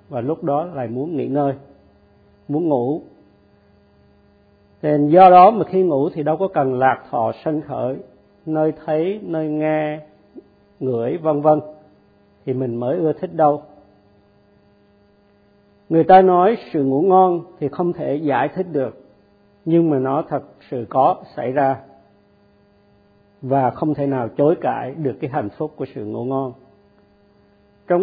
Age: 50-69